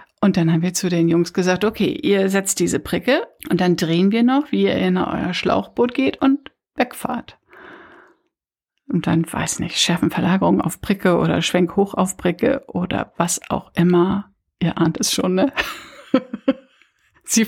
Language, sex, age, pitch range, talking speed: German, female, 60-79, 190-265 Hz, 170 wpm